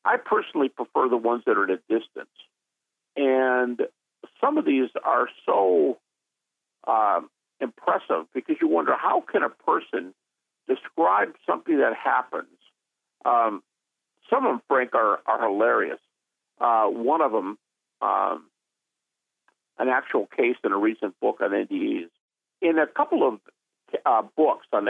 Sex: male